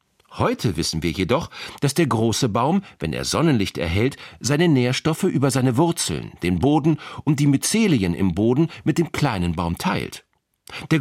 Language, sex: German, male